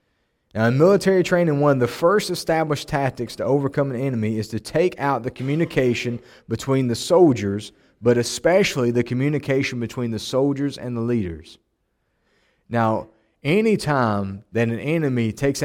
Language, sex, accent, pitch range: English, male, American, 105-135 Hz